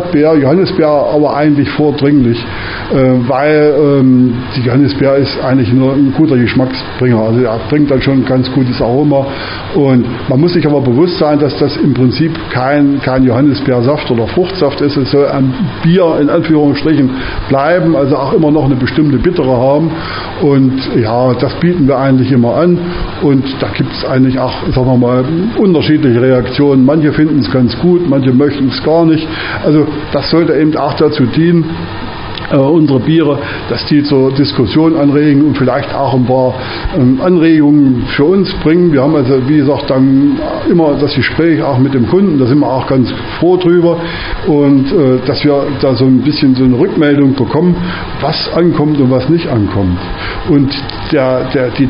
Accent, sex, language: German, male, German